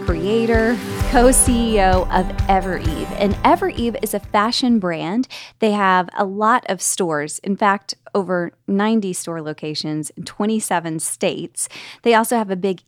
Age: 20-39